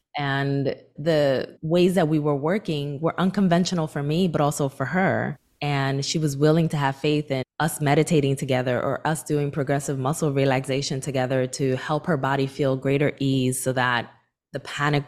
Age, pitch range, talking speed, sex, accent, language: 20-39, 130-155 Hz, 175 wpm, female, American, English